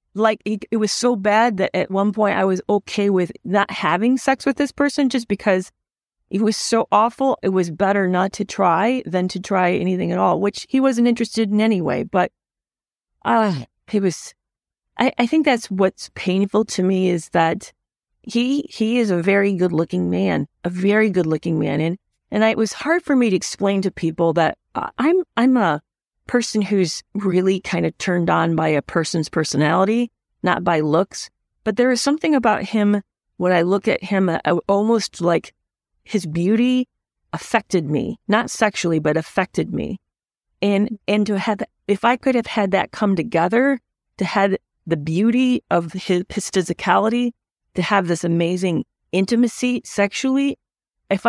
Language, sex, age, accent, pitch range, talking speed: English, female, 40-59, American, 180-230 Hz, 175 wpm